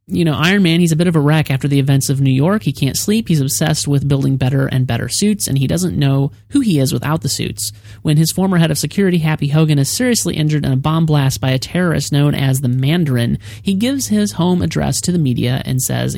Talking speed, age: 255 wpm, 30-49